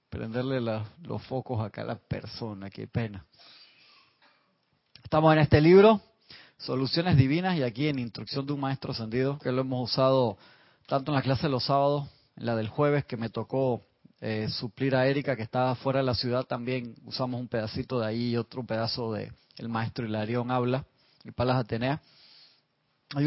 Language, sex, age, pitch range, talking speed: Spanish, male, 30-49, 125-155 Hz, 180 wpm